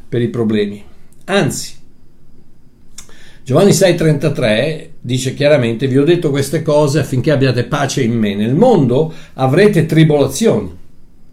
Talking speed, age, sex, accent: 120 wpm, 60-79, male, native